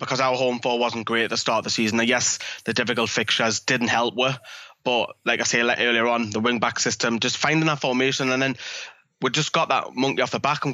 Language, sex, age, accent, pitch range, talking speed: English, male, 20-39, British, 115-130 Hz, 250 wpm